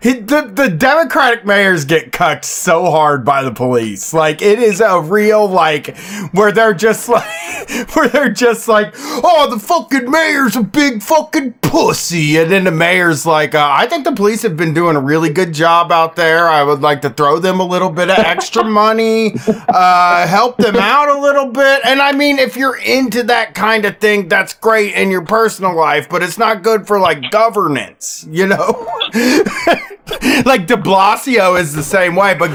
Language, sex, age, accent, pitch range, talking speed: English, male, 30-49, American, 170-230 Hz, 190 wpm